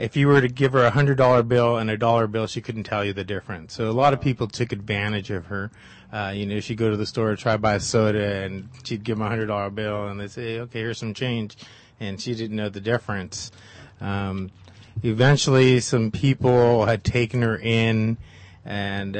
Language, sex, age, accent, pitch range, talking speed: English, male, 30-49, American, 100-115 Hz, 220 wpm